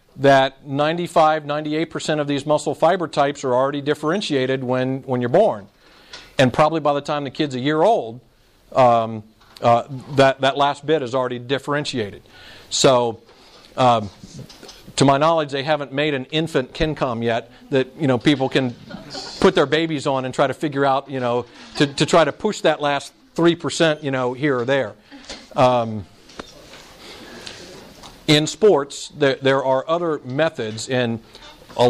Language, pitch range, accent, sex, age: Japanese, 125-150 Hz, American, male, 50-69